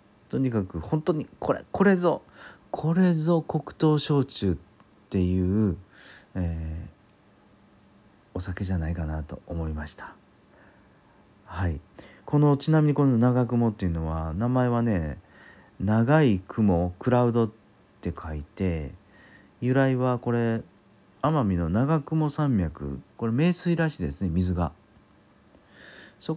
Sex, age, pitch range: male, 40-59, 85-115 Hz